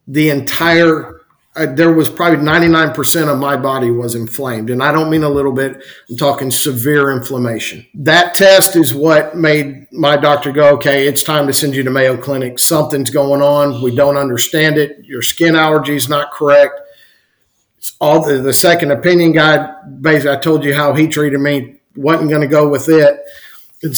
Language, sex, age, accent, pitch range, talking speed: English, male, 50-69, American, 140-160 Hz, 185 wpm